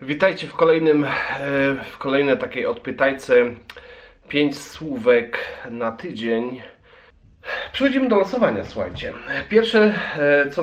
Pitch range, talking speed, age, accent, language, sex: 110-155 Hz, 95 wpm, 40-59, native, Polish, male